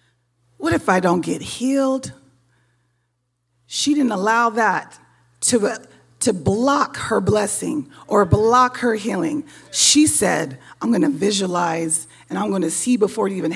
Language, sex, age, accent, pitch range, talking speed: English, female, 40-59, American, 185-270 Hz, 135 wpm